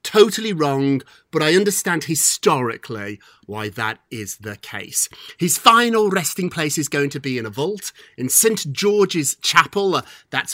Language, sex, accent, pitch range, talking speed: English, male, British, 125-175 Hz, 155 wpm